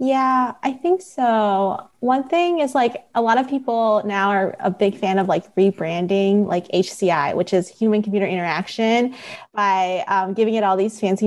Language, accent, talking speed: English, American, 175 wpm